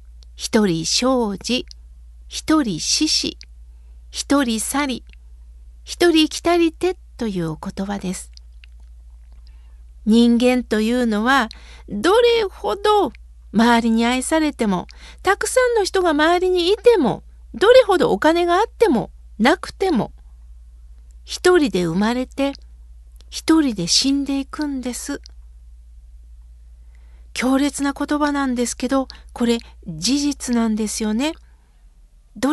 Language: Japanese